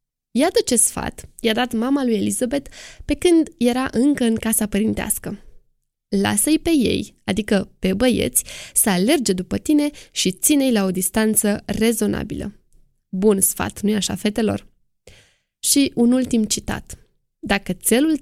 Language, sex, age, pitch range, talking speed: Romanian, female, 20-39, 200-270 Hz, 140 wpm